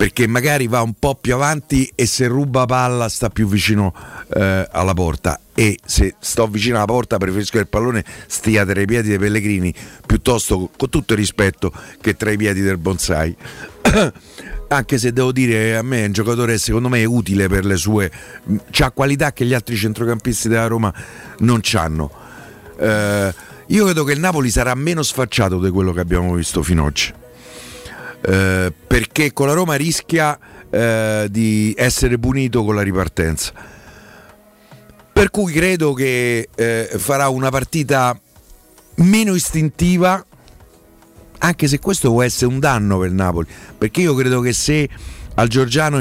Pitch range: 105-130 Hz